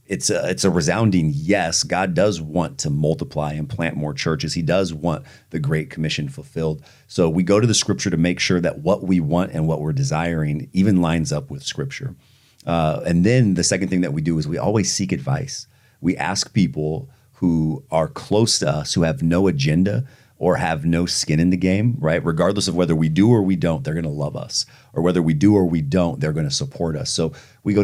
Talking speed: 220 wpm